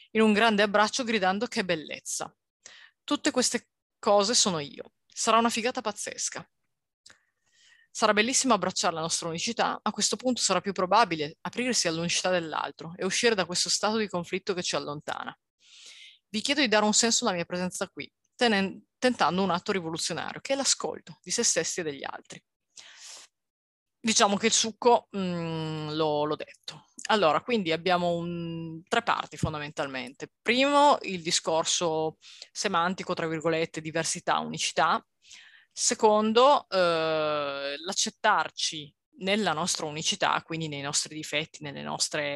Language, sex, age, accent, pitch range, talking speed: Italian, female, 30-49, native, 160-225 Hz, 135 wpm